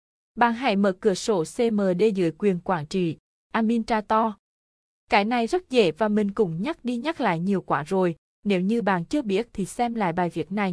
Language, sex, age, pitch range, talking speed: Vietnamese, female, 20-39, 180-225 Hz, 200 wpm